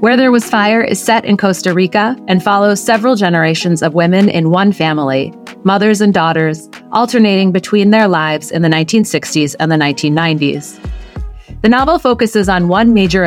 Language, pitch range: English, 160-210 Hz